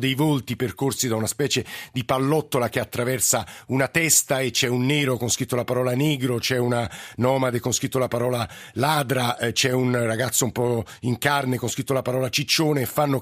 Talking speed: 195 wpm